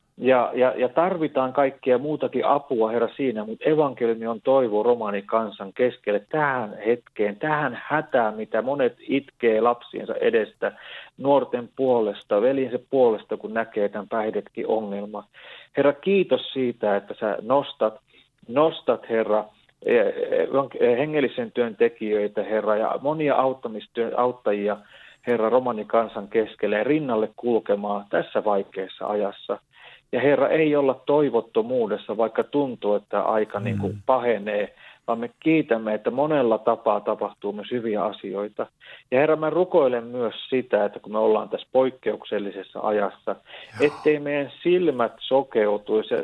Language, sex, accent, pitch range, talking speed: Finnish, male, native, 110-145 Hz, 125 wpm